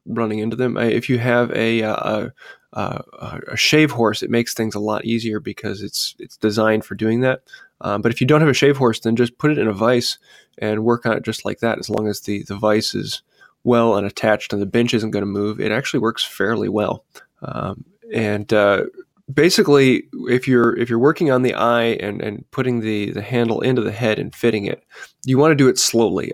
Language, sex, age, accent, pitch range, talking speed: English, male, 20-39, American, 110-125 Hz, 230 wpm